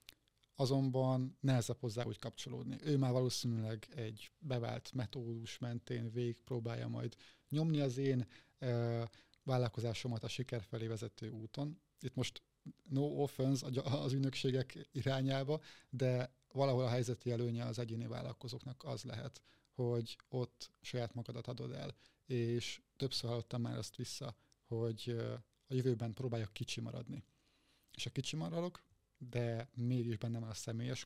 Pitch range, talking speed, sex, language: 120-140 Hz, 135 wpm, male, Hungarian